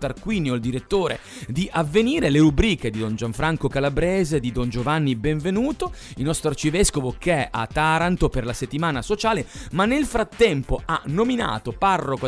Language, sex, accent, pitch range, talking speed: Italian, male, native, 130-185 Hz, 155 wpm